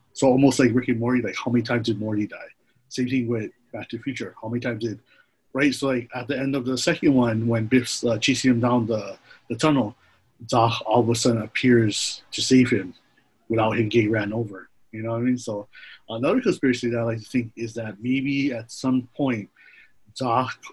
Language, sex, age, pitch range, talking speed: English, male, 30-49, 110-130 Hz, 225 wpm